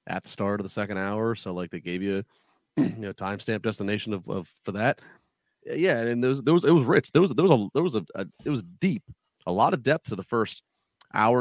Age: 30-49